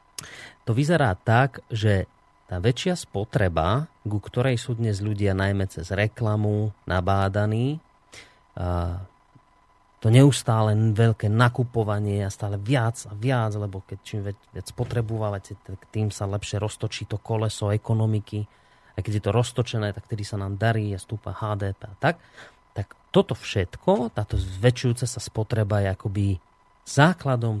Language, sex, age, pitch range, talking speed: Slovak, male, 30-49, 100-125 Hz, 135 wpm